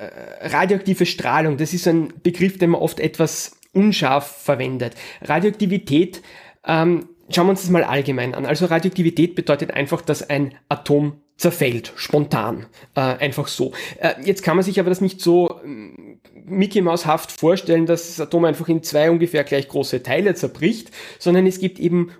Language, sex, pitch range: German, male, 145-175 Hz